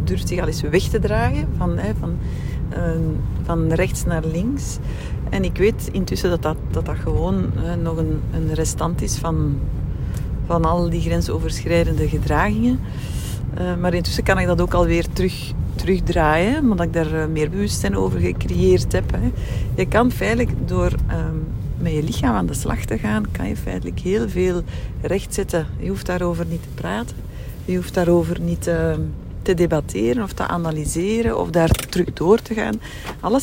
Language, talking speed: Dutch, 170 wpm